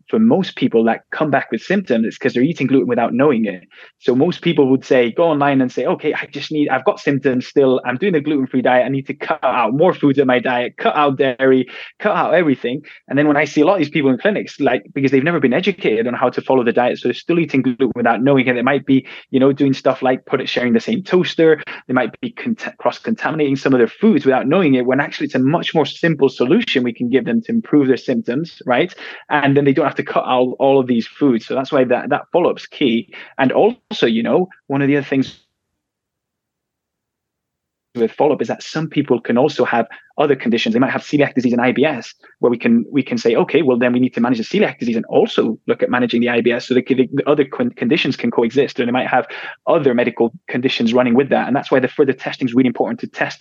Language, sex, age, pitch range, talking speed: English, male, 20-39, 125-155 Hz, 255 wpm